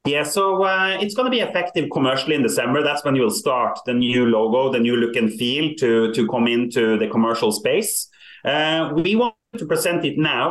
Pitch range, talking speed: 110-150 Hz, 210 wpm